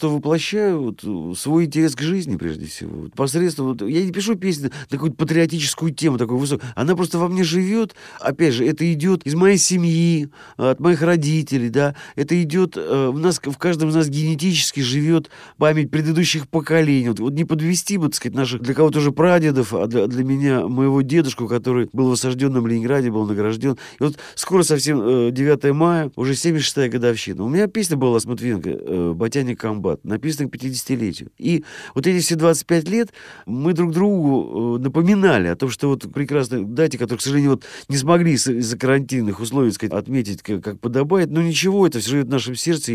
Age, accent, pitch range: 40-59, native, 120-165 Hz